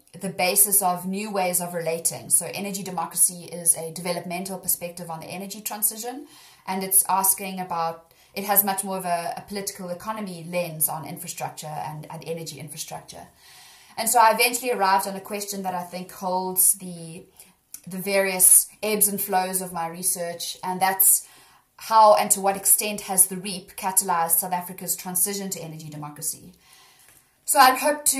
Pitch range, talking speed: 175-205 Hz, 170 wpm